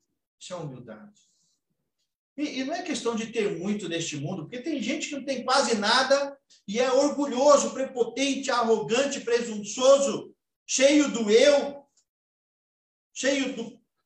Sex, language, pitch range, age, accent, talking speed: male, Portuguese, 175-240 Hz, 50-69, Brazilian, 130 wpm